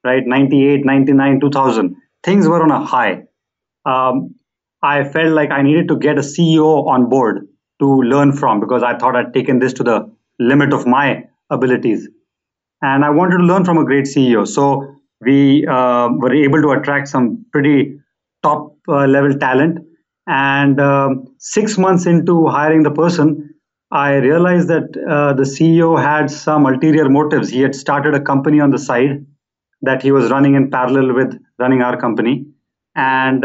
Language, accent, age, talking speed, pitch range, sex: English, Indian, 30-49, 170 wpm, 130-155 Hz, male